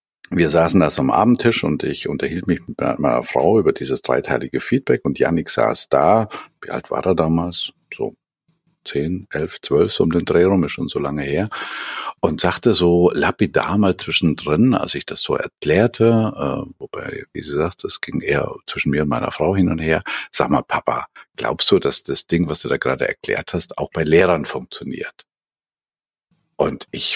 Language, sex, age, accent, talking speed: German, male, 50-69, German, 190 wpm